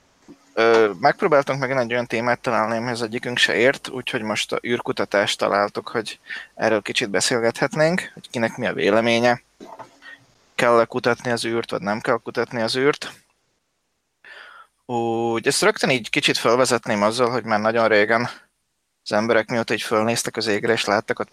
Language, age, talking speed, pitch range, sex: Hungarian, 20-39, 160 wpm, 110-125 Hz, male